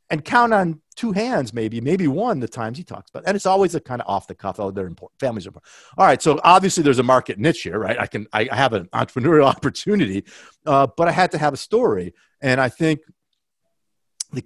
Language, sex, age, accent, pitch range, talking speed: English, male, 50-69, American, 95-150 Hz, 240 wpm